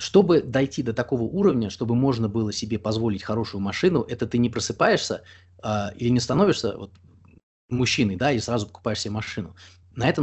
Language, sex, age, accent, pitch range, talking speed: Russian, male, 20-39, native, 100-125 Hz, 165 wpm